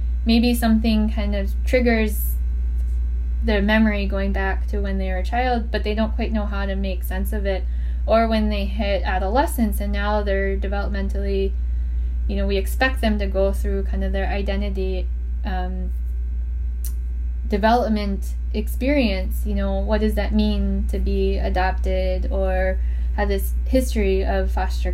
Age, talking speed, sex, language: 10-29, 155 wpm, female, English